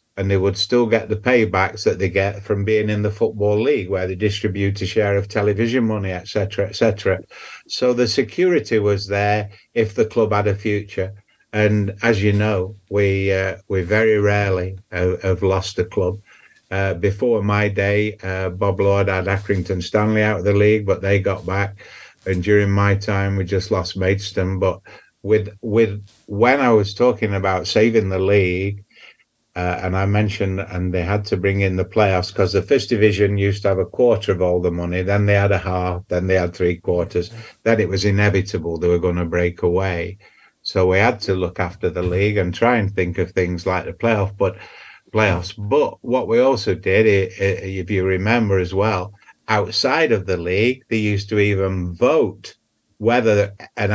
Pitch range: 95-105 Hz